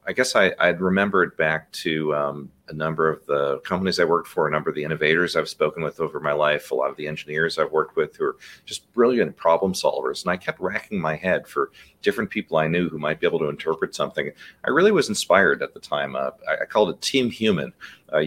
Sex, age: male, 40-59